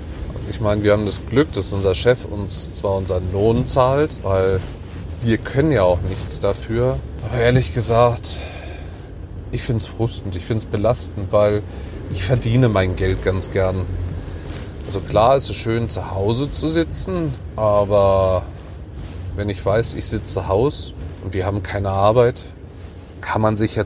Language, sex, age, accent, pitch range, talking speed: German, male, 30-49, German, 90-110 Hz, 165 wpm